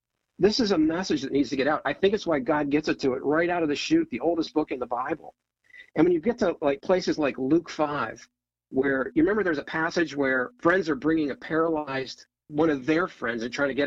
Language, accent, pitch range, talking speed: English, American, 130-170 Hz, 255 wpm